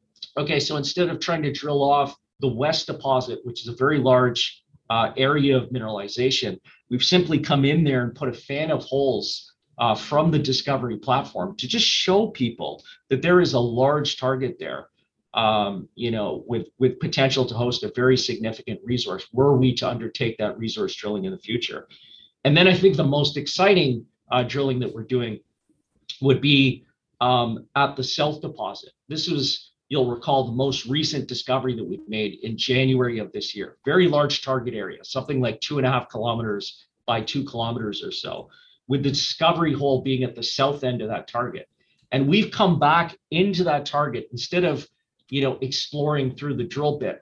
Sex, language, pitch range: male, English, 120-145 Hz